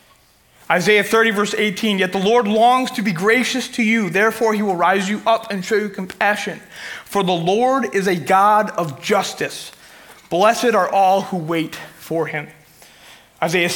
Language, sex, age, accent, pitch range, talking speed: English, male, 30-49, American, 175-220 Hz, 170 wpm